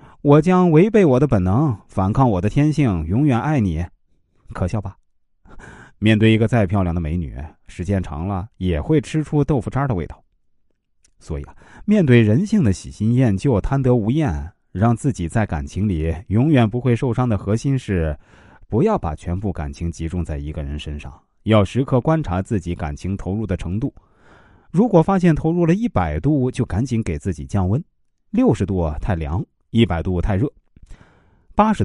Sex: male